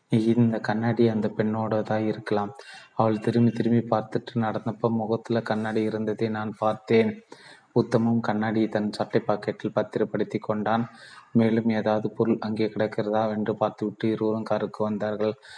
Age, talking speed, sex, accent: 30-49, 130 wpm, male, native